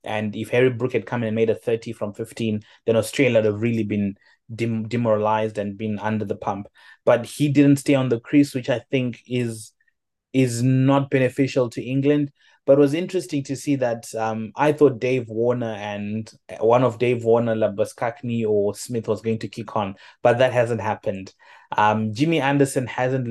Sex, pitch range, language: male, 110-140 Hz, English